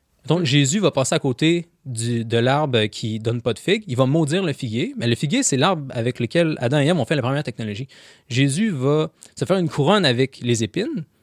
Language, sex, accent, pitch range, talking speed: French, male, Canadian, 125-170 Hz, 230 wpm